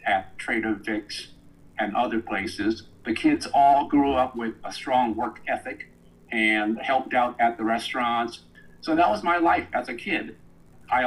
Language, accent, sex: Chinese, American, male